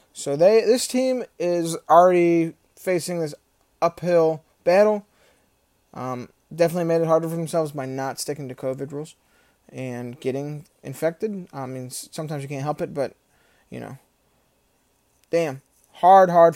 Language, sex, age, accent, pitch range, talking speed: English, male, 20-39, American, 140-175 Hz, 140 wpm